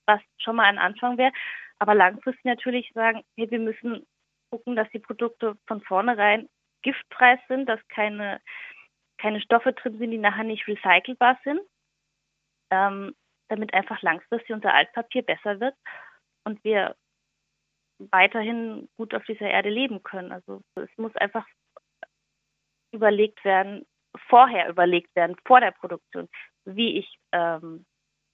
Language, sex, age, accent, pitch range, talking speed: German, female, 20-39, German, 190-235 Hz, 135 wpm